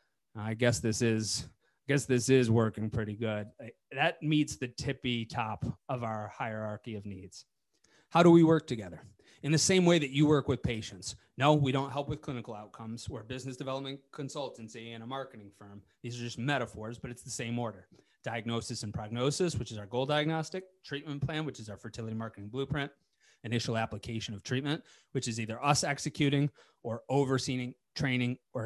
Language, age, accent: English, 30-49, American